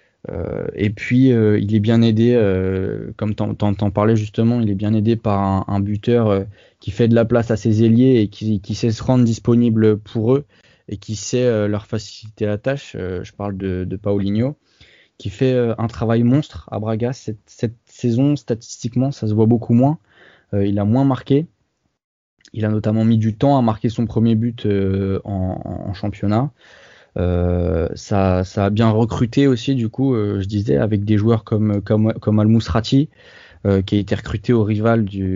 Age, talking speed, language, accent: 20-39, 200 wpm, French, French